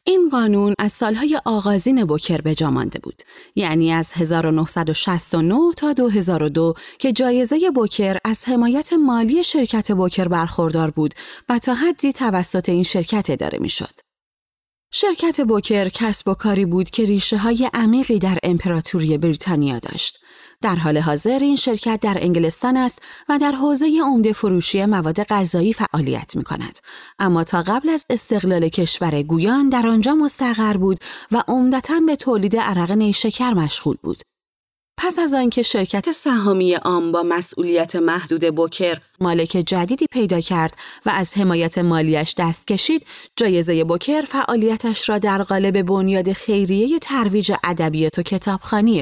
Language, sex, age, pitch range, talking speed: Persian, female, 30-49, 175-245 Hz, 140 wpm